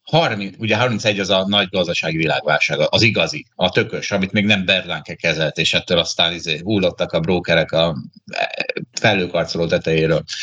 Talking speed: 155 wpm